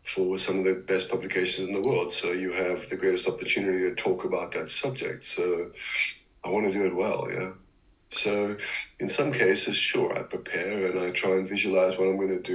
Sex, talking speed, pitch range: male, 220 wpm, 95-105 Hz